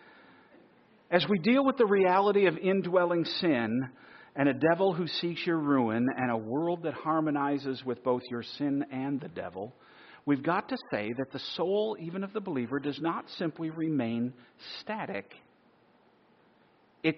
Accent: American